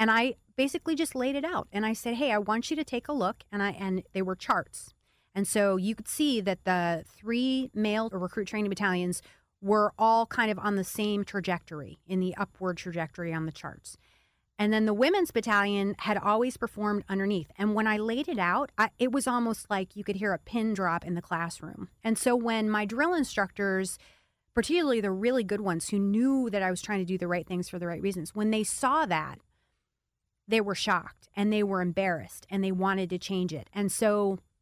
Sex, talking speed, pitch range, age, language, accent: female, 220 wpm, 180-220 Hz, 30-49, English, American